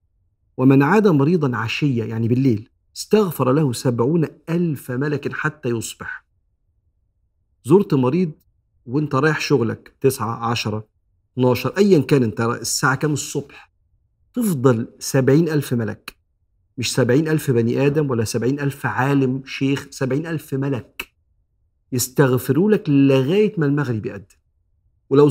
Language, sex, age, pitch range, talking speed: Arabic, male, 50-69, 115-150 Hz, 120 wpm